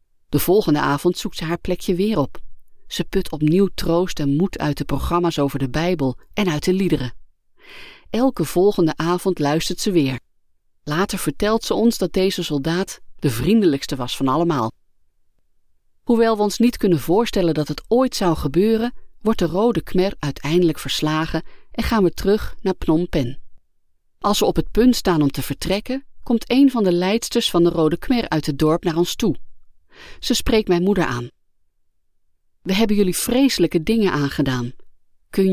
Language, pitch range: Dutch, 125-185 Hz